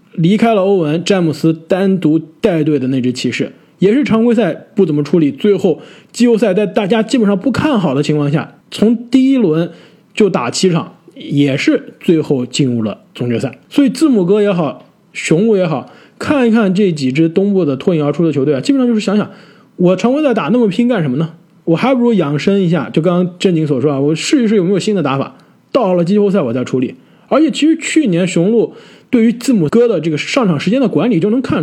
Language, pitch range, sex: Chinese, 160-230 Hz, male